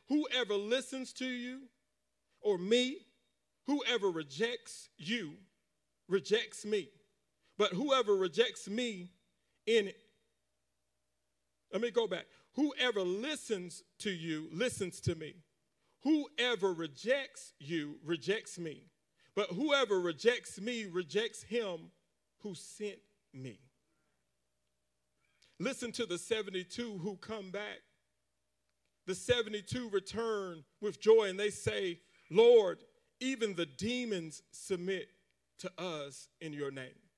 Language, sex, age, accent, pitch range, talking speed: English, male, 40-59, American, 170-245 Hz, 110 wpm